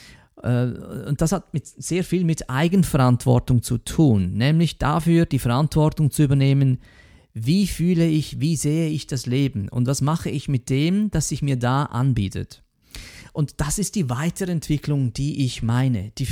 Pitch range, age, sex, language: 130-175 Hz, 40-59, male, German